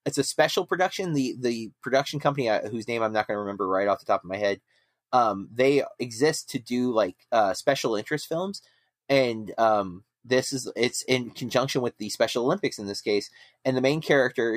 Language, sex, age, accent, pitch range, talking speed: English, male, 30-49, American, 100-130 Hz, 210 wpm